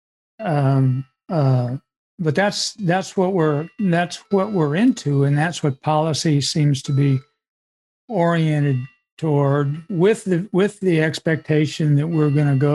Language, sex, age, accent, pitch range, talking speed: English, male, 60-79, American, 140-175 Hz, 140 wpm